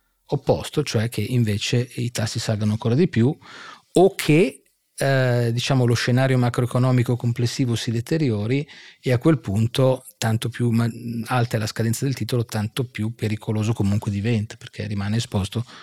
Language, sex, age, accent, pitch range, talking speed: Italian, male, 40-59, native, 115-135 Hz, 155 wpm